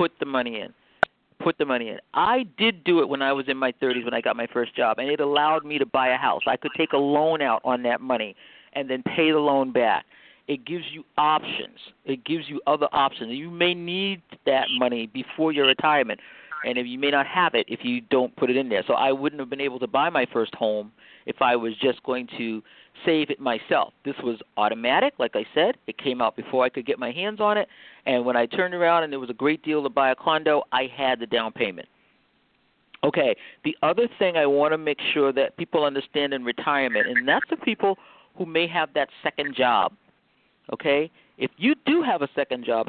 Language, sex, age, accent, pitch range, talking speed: English, male, 50-69, American, 125-165 Hz, 235 wpm